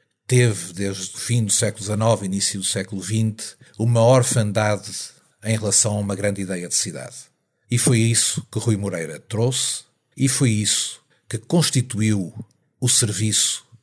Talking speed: 150 wpm